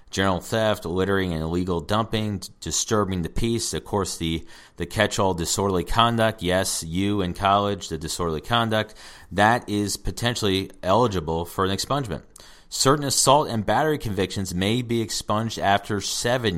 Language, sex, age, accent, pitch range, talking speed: English, male, 40-59, American, 85-105 Hz, 145 wpm